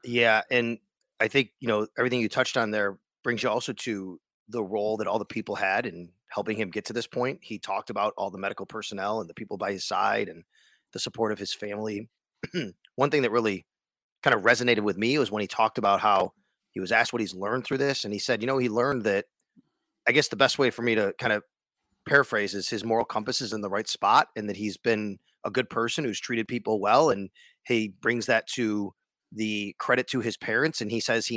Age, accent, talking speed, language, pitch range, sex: 30-49, American, 235 wpm, English, 105-125 Hz, male